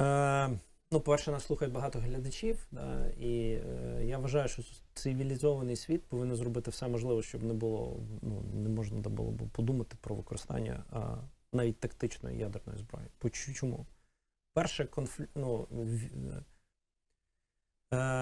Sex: male